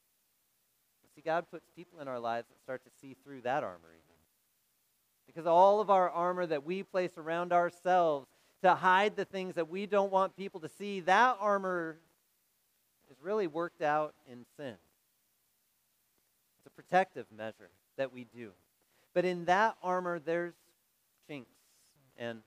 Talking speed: 155 wpm